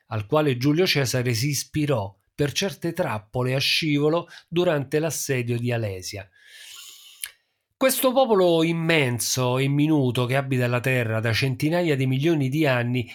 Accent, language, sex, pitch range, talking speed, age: native, Italian, male, 125-175 Hz, 135 wpm, 40-59